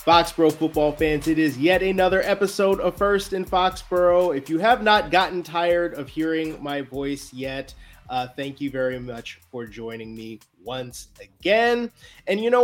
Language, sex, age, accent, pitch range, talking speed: English, male, 30-49, American, 140-190 Hz, 170 wpm